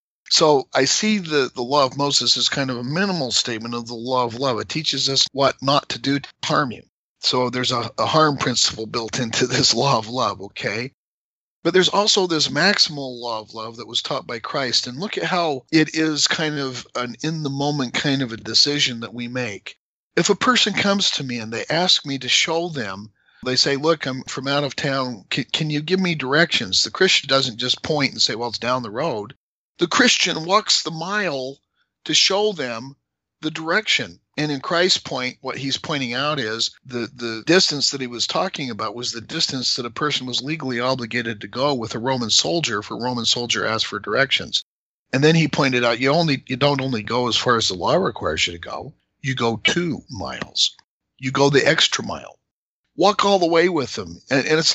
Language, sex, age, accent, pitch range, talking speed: English, male, 50-69, American, 120-155 Hz, 215 wpm